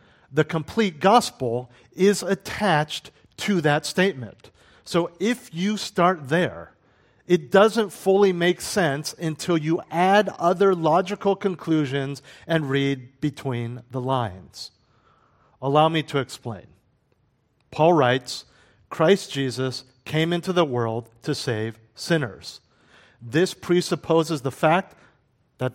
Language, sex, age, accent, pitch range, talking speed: English, male, 50-69, American, 125-170 Hz, 115 wpm